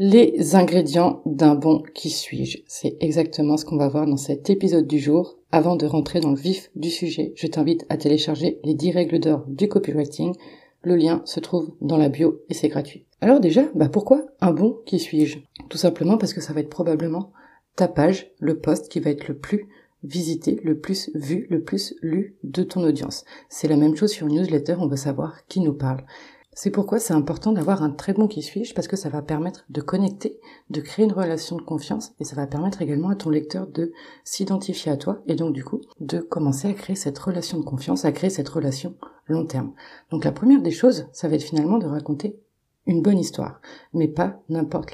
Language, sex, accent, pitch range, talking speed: French, female, French, 150-185 Hz, 220 wpm